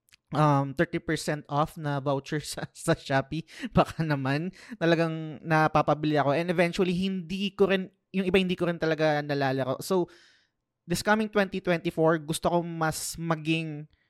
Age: 20-39